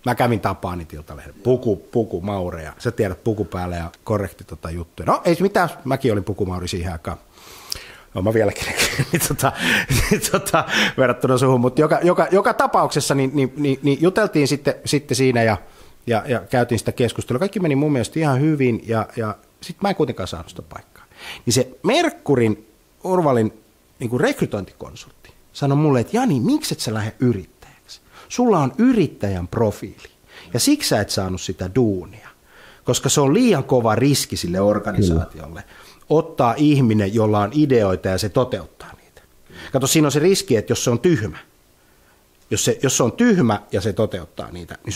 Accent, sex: native, male